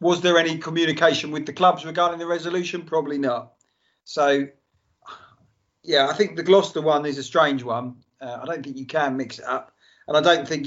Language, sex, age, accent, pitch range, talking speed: English, male, 40-59, British, 140-180 Hz, 200 wpm